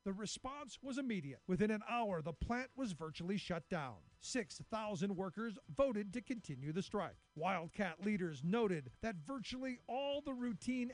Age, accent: 50-69, American